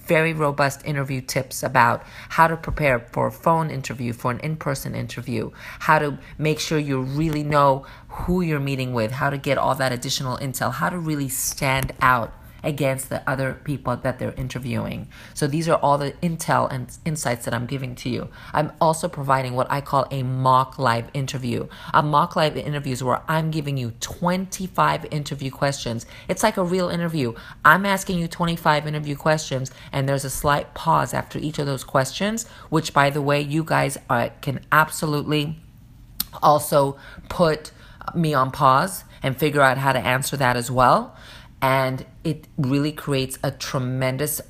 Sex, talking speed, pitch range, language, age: female, 175 wpm, 125-150 Hz, English, 30-49